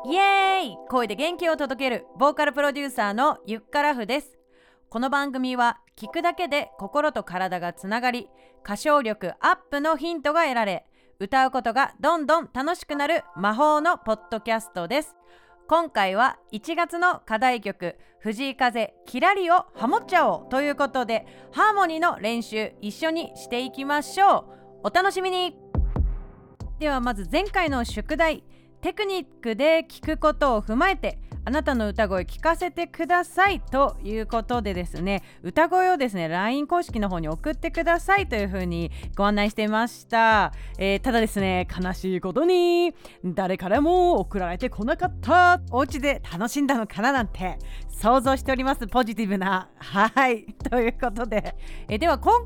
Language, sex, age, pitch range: Japanese, female, 30-49, 210-325 Hz